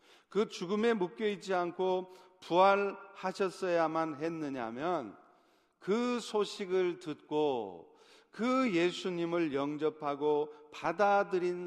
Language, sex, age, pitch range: Korean, male, 40-59, 165-205 Hz